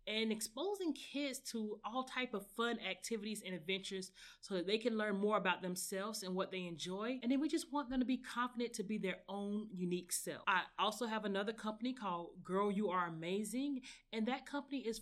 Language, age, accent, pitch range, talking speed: English, 30-49, American, 185-225 Hz, 210 wpm